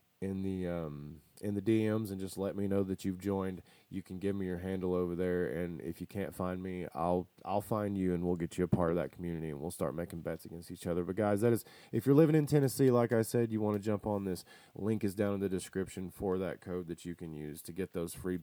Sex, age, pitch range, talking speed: male, 30-49, 90-110 Hz, 275 wpm